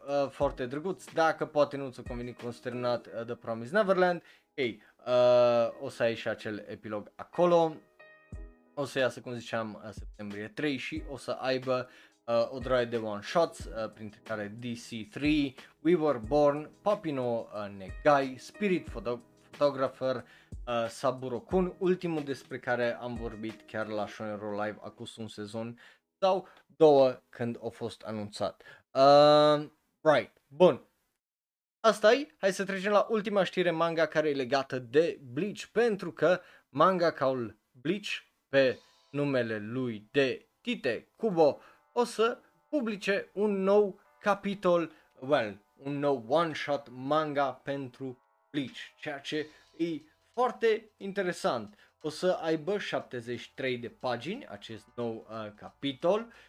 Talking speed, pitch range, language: 135 wpm, 115-175 Hz, Romanian